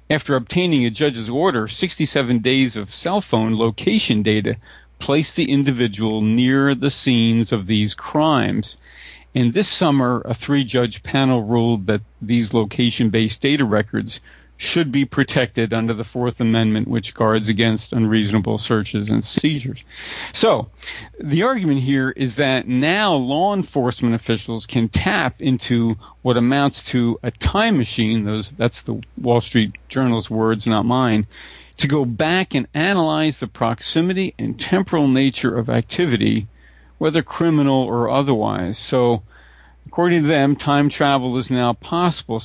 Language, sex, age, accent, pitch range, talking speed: English, male, 50-69, American, 115-145 Hz, 140 wpm